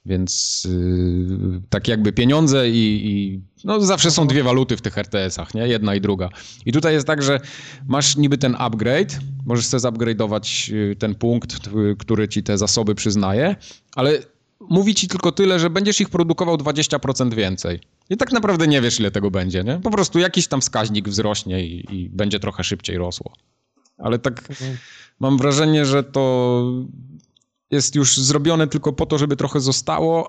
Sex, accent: male, native